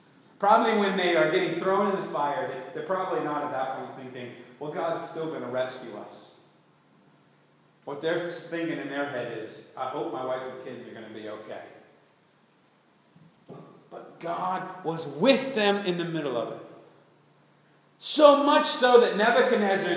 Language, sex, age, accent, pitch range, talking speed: English, male, 40-59, American, 135-190 Hz, 170 wpm